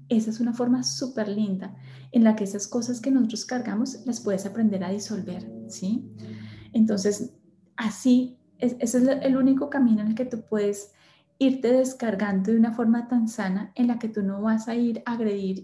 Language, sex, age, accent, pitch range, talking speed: Spanish, female, 10-29, Colombian, 195-235 Hz, 190 wpm